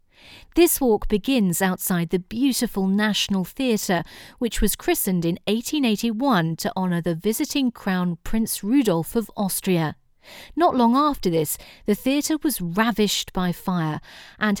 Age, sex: 40-59, female